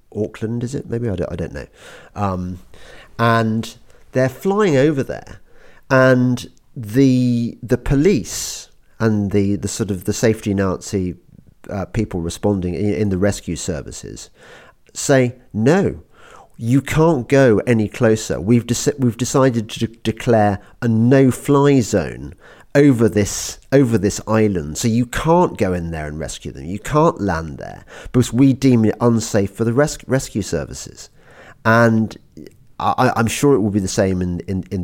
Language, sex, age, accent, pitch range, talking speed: English, male, 50-69, British, 95-125 Hz, 160 wpm